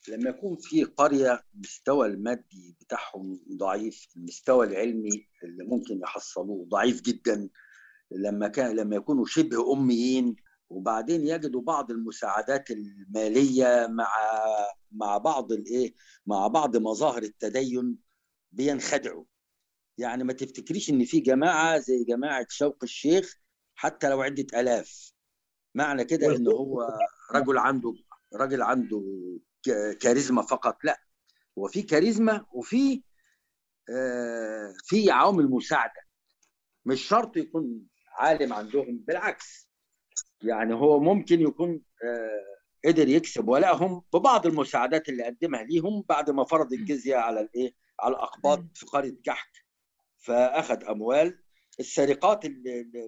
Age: 50-69